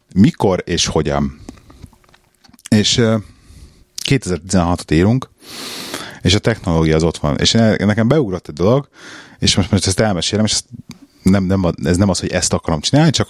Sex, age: male, 30-49